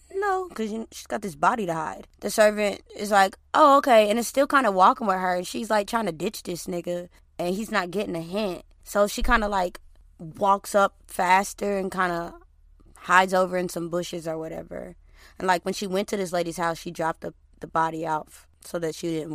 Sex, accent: female, American